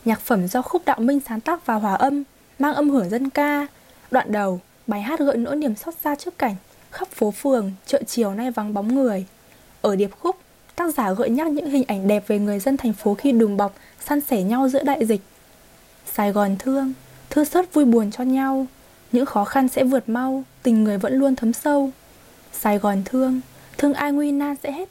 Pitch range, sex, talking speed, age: 215-280 Hz, female, 220 wpm, 10-29